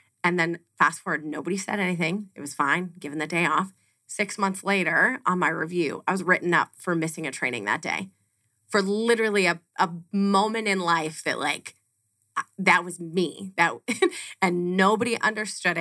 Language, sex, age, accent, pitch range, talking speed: English, female, 30-49, American, 150-185 Hz, 175 wpm